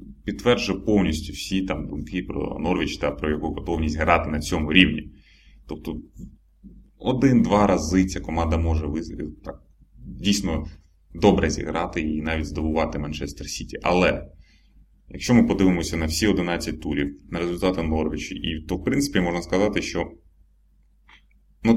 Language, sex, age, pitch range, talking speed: Russian, male, 20-39, 75-90 Hz, 125 wpm